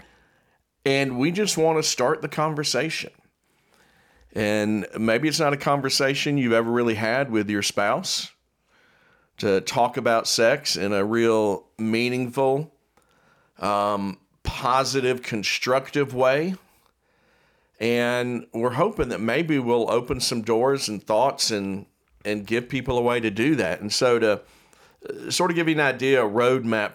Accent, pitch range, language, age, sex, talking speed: American, 110-140 Hz, English, 50-69, male, 140 wpm